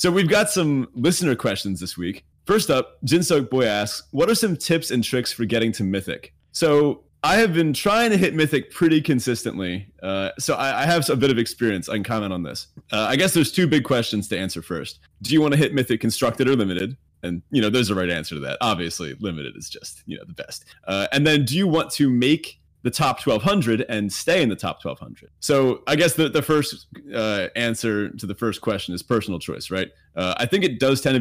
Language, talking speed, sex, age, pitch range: English, 235 wpm, male, 30-49, 95-140 Hz